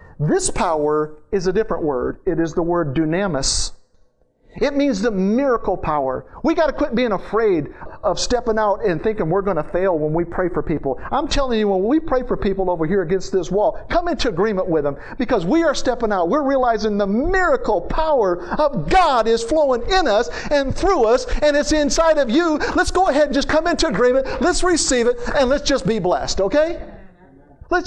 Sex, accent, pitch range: male, American, 200-320 Hz